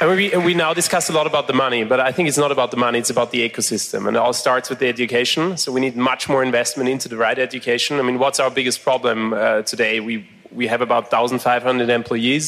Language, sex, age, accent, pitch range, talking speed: German, male, 30-49, German, 125-145 Hz, 260 wpm